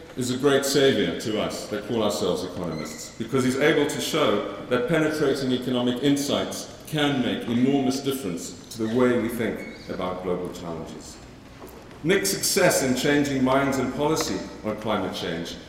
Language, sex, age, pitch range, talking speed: English, male, 50-69, 110-145 Hz, 155 wpm